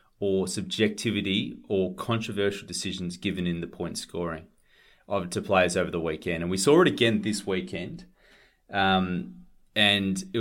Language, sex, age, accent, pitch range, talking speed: English, male, 30-49, Australian, 90-110 Hz, 150 wpm